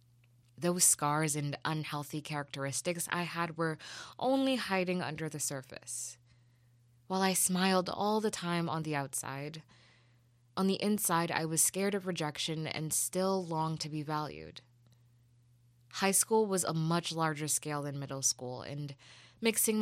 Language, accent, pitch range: English, American, 130-180 Hz